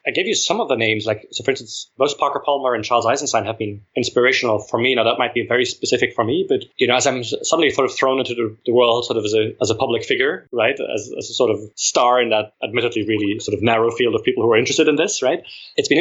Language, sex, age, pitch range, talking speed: English, male, 20-39, 110-140 Hz, 285 wpm